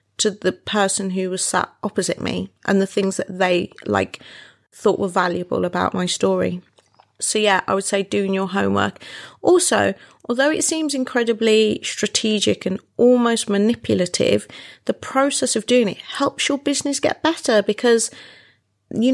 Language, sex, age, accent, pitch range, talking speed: English, female, 30-49, British, 185-235 Hz, 155 wpm